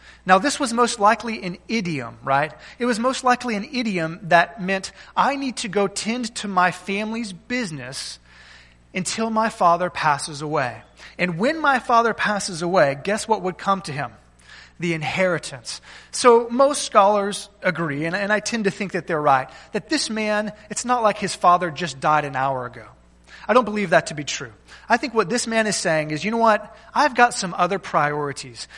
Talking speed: 190 wpm